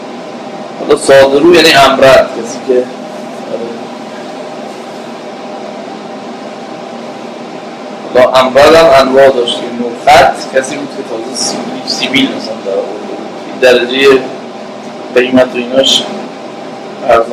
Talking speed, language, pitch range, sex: 50 wpm, Persian, 130-170 Hz, male